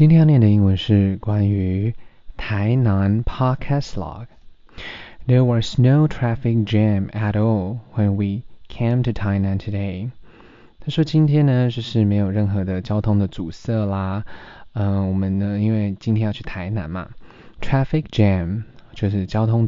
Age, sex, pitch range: 20-39, male, 100-120 Hz